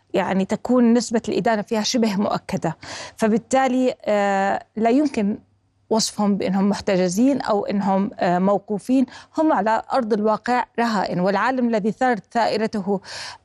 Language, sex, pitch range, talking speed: Arabic, female, 200-240 Hz, 110 wpm